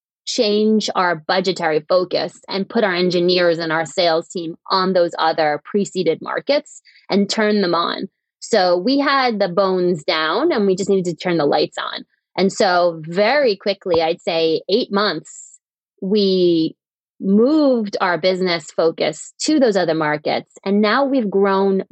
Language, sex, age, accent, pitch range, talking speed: English, female, 20-39, American, 170-220 Hz, 155 wpm